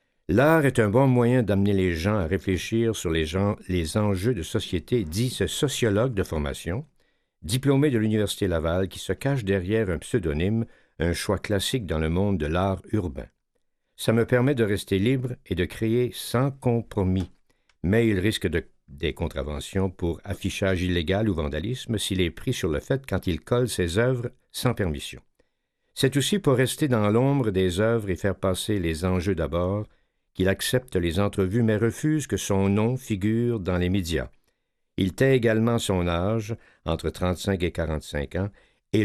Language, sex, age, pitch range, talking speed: French, male, 60-79, 90-120 Hz, 175 wpm